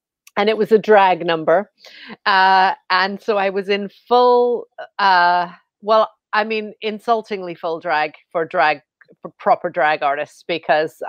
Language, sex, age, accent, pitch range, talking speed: English, female, 40-59, American, 175-230 Hz, 145 wpm